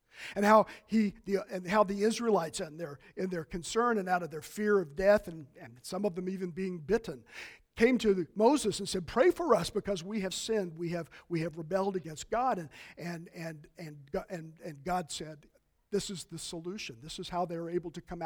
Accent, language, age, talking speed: American, English, 50-69, 230 wpm